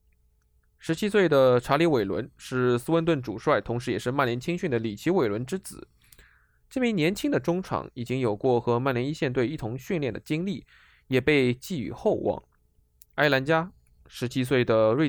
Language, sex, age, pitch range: Chinese, male, 20-39, 115-165 Hz